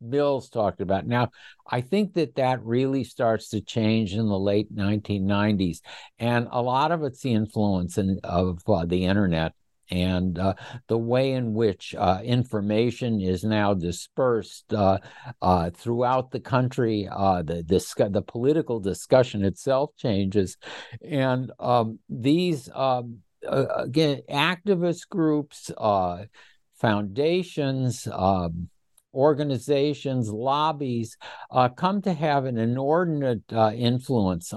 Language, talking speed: English, 125 wpm